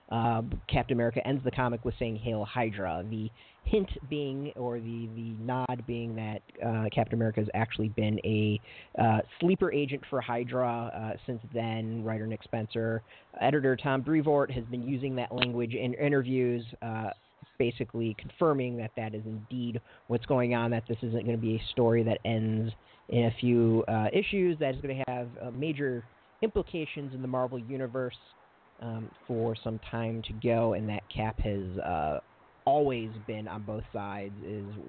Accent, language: American, English